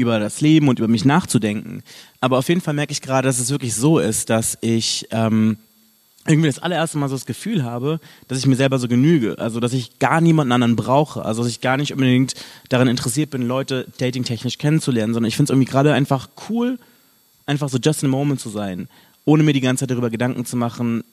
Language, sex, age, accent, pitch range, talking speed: German, male, 30-49, German, 125-155 Hz, 225 wpm